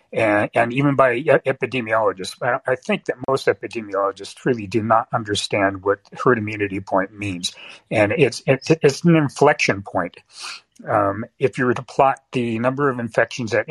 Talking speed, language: 165 wpm, English